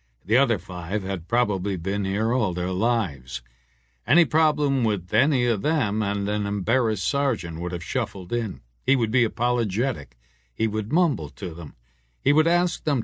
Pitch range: 75-125 Hz